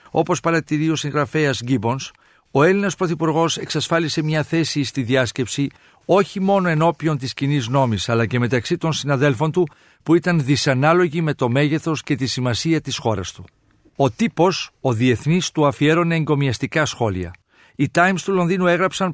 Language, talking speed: Greek, 155 wpm